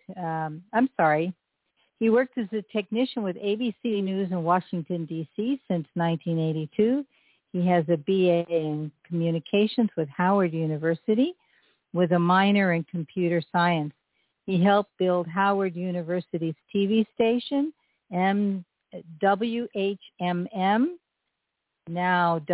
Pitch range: 170-215 Hz